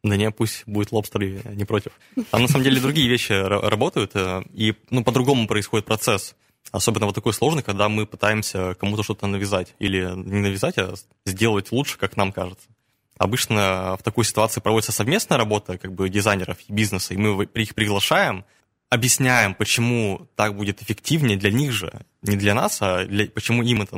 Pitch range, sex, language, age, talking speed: 100-115 Hz, male, Russian, 20-39, 175 wpm